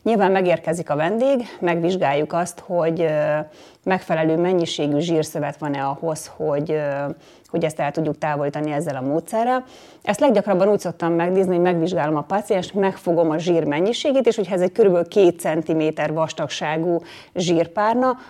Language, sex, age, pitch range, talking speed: Hungarian, female, 30-49, 155-185 Hz, 140 wpm